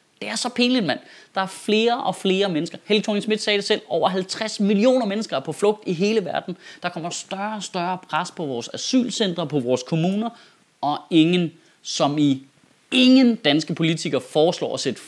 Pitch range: 155-210 Hz